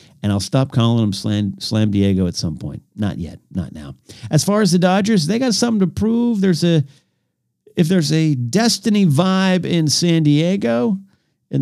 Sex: male